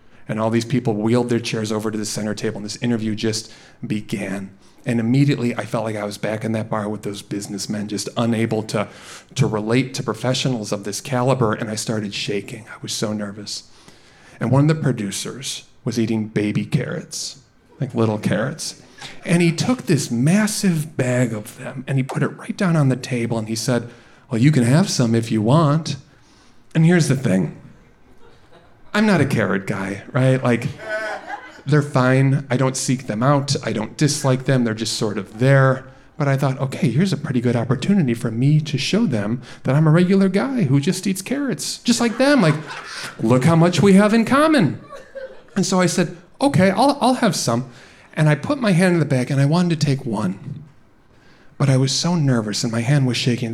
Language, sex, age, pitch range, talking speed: English, male, 40-59, 115-160 Hz, 205 wpm